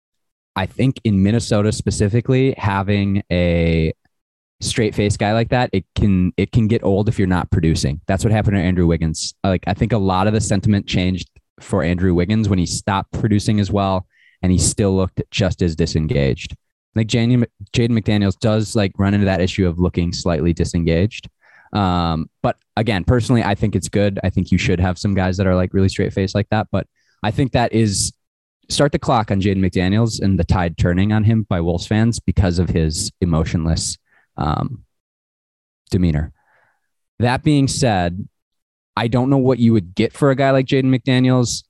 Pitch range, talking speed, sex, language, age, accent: 85-110 Hz, 190 wpm, male, English, 20-39, American